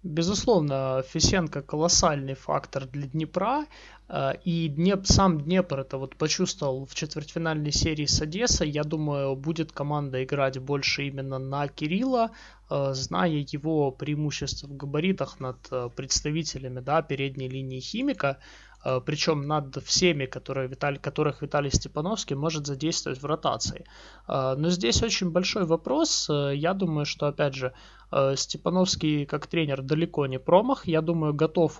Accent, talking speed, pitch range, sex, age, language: native, 125 wpm, 140-170 Hz, male, 20-39, Russian